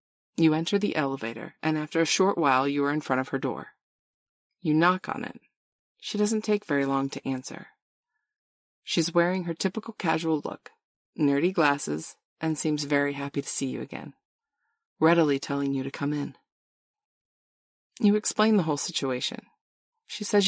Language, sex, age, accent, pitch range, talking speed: English, female, 30-49, American, 140-210 Hz, 165 wpm